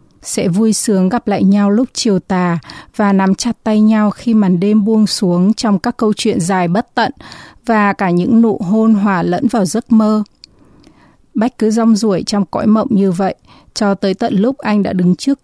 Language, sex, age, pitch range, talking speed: Vietnamese, female, 20-39, 190-220 Hz, 205 wpm